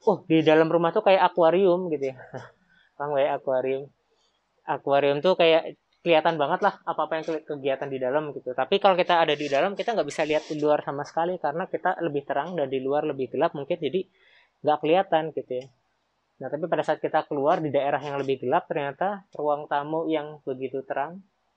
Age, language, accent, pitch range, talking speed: 20-39, Indonesian, native, 130-160 Hz, 200 wpm